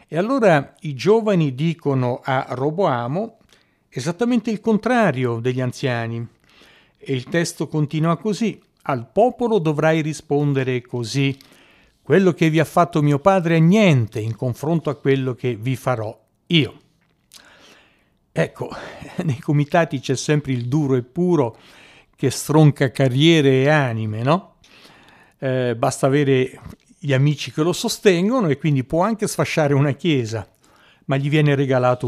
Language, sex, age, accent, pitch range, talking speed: Italian, male, 60-79, native, 130-180 Hz, 135 wpm